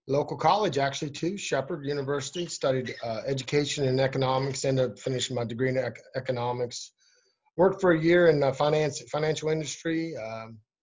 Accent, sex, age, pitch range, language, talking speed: American, male, 30-49, 125-150 Hz, English, 160 wpm